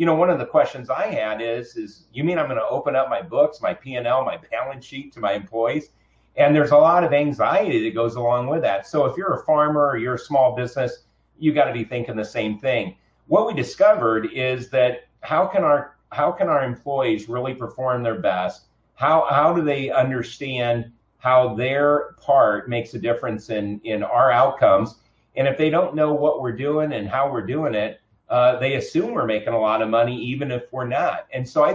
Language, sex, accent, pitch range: English, male, American, 115-155 Hz